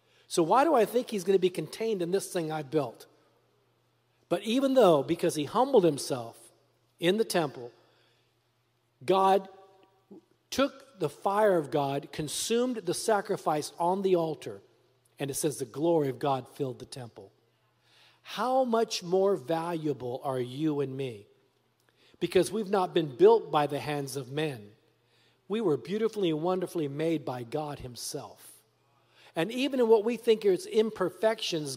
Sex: male